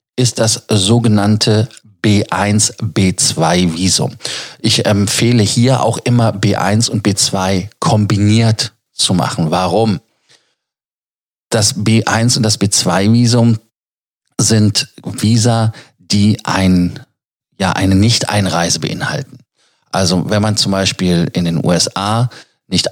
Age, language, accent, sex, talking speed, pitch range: 40-59, German, German, male, 95 wpm, 95-120 Hz